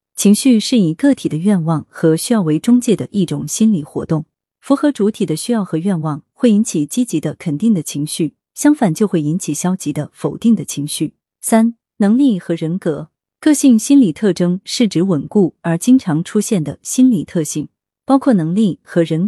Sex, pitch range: female, 155-220 Hz